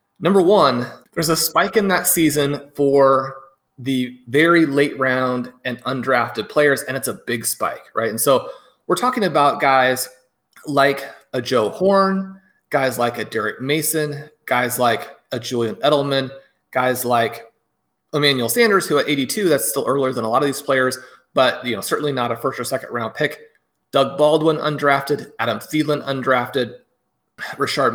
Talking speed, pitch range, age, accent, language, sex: 165 wpm, 130-150 Hz, 30-49, American, English, male